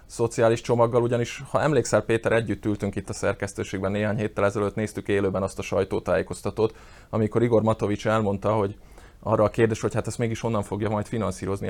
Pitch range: 100-110 Hz